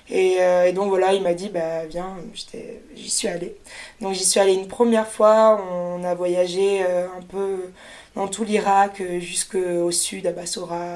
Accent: French